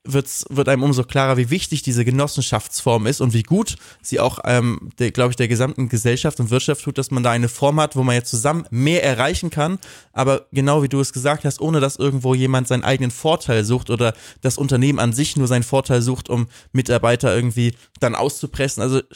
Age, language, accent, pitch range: 20-39, German, German, 115-140 Hz